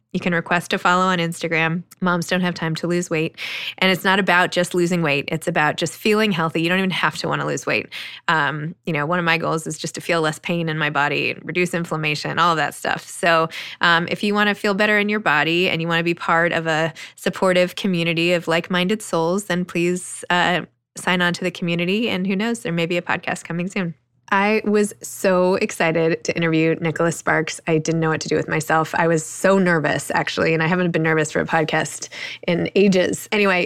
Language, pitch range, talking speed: English, 160-190 Hz, 230 wpm